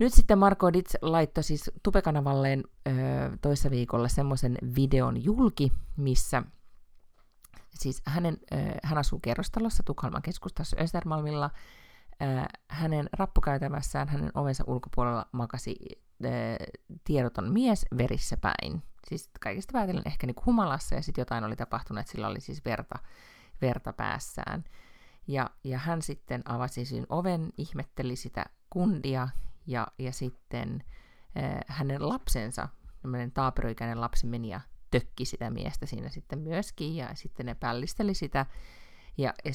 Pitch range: 125-160 Hz